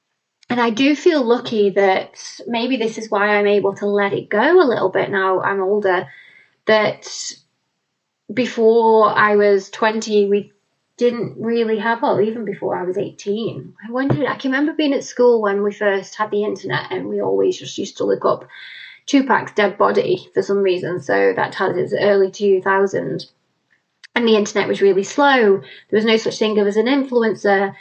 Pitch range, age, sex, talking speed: 200-235 Hz, 20-39, female, 185 wpm